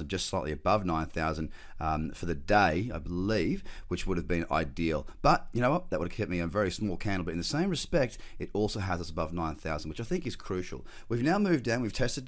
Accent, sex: Australian, male